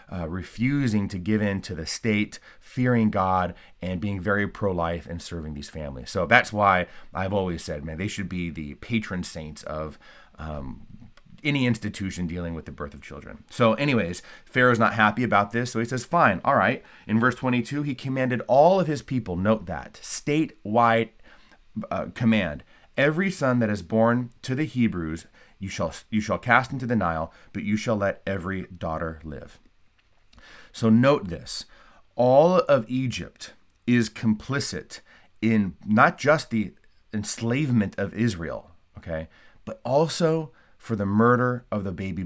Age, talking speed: 30-49, 160 wpm